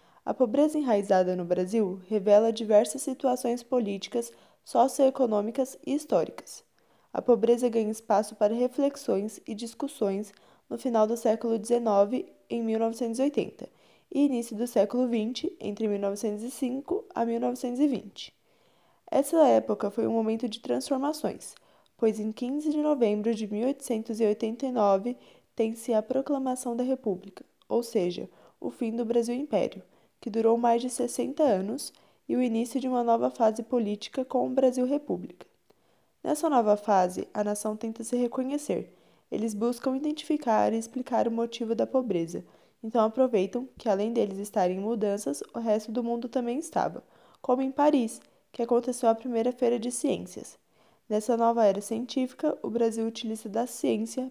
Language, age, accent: Portuguese, 10-29, Brazilian